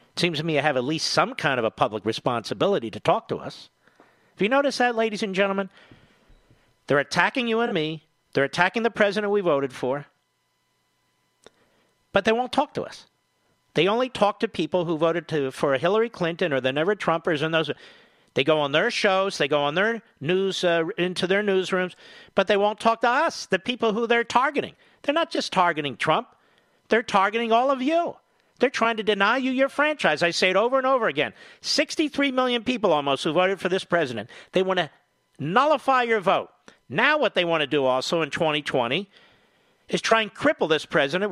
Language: English